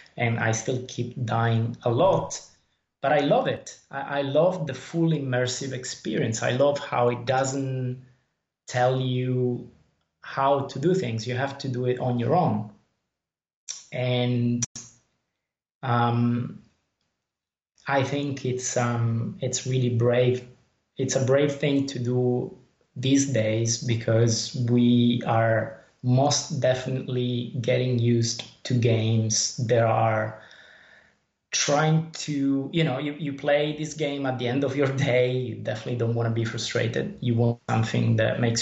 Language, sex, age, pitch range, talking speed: English, male, 20-39, 115-135 Hz, 140 wpm